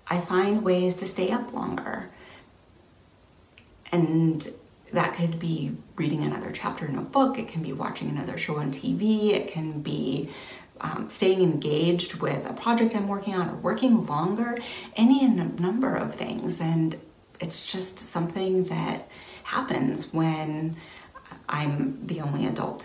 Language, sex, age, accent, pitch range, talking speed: English, female, 30-49, American, 160-215 Hz, 145 wpm